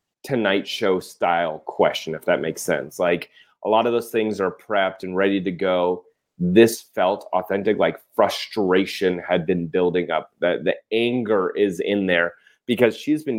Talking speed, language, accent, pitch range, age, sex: 170 wpm, English, American, 95-120 Hz, 30-49, male